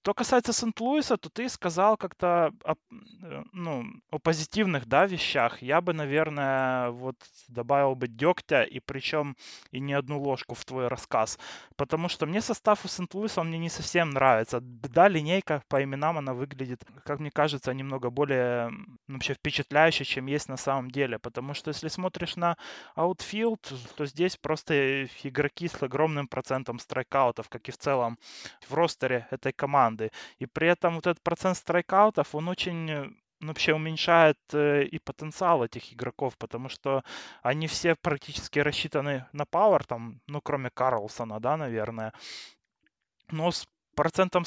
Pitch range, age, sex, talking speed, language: 130-165 Hz, 20-39, male, 150 wpm, Russian